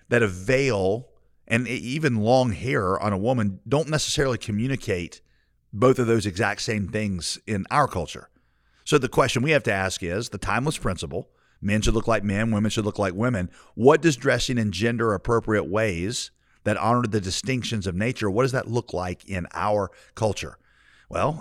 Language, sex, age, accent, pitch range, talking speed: English, male, 40-59, American, 95-120 Hz, 180 wpm